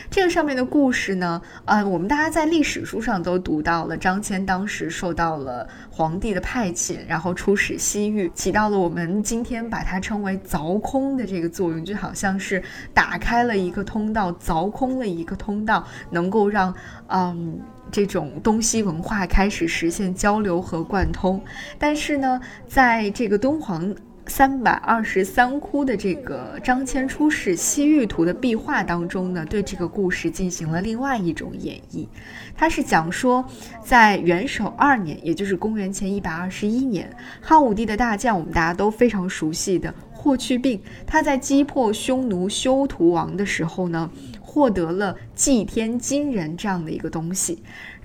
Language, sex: Chinese, female